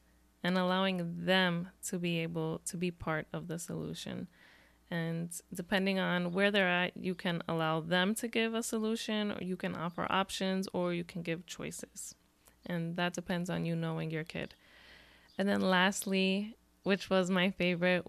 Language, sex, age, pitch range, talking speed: English, female, 20-39, 165-190 Hz, 170 wpm